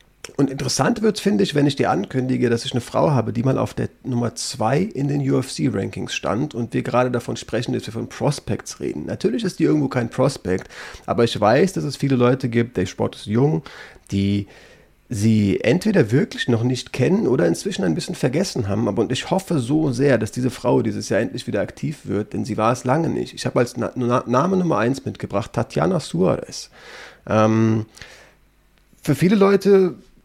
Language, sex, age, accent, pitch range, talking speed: German, male, 30-49, German, 115-145 Hz, 195 wpm